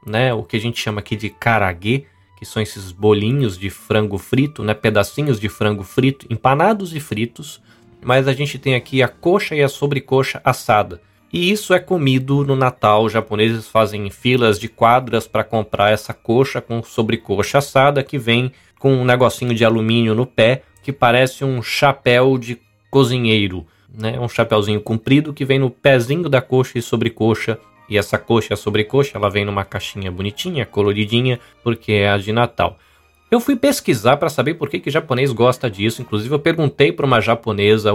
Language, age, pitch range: Portuguese, 20-39, 110-140 Hz